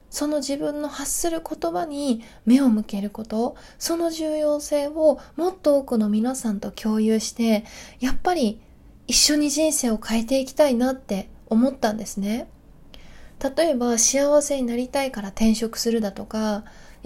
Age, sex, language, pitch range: 20-39, female, Japanese, 215-285 Hz